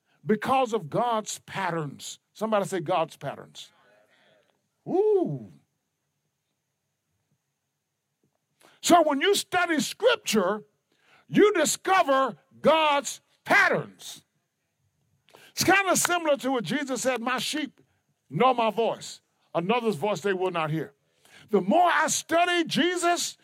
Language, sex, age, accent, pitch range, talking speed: English, male, 50-69, American, 210-315 Hz, 110 wpm